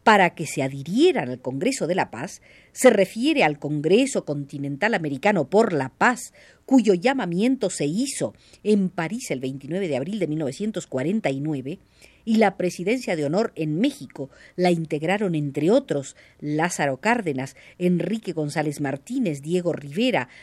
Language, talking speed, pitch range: Spanish, 140 wpm, 145-220 Hz